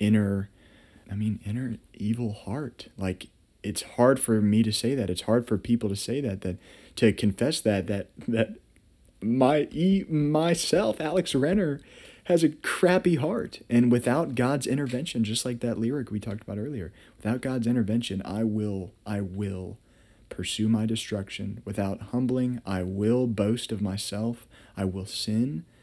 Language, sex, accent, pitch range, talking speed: English, male, American, 100-120 Hz, 155 wpm